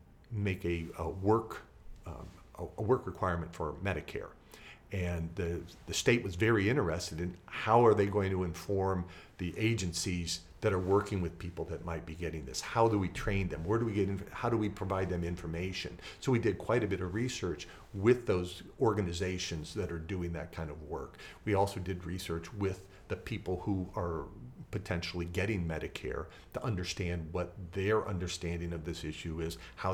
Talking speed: 185 wpm